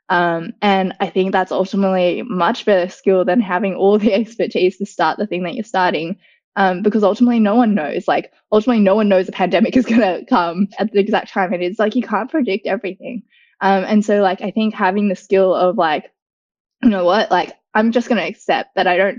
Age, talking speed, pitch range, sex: 10-29, 220 wpm, 180-210 Hz, female